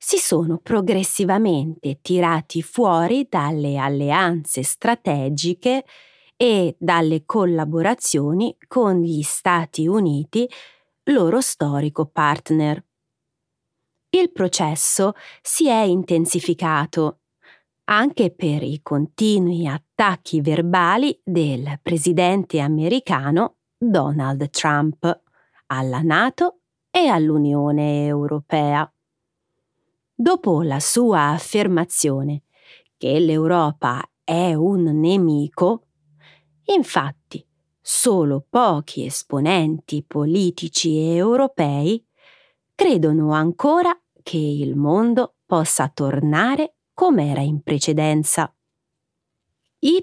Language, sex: Italian, female